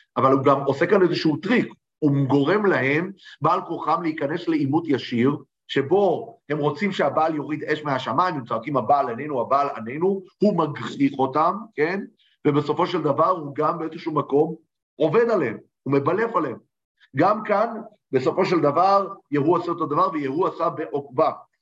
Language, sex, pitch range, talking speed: Hebrew, male, 130-170 Hz, 155 wpm